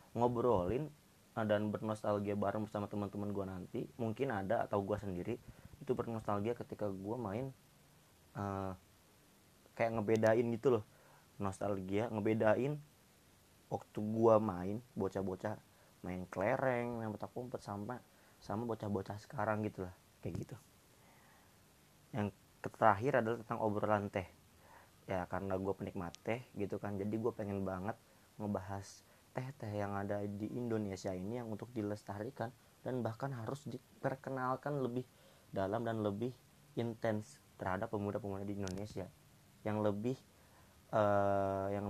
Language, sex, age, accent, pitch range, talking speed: Indonesian, male, 20-39, native, 100-115 Hz, 125 wpm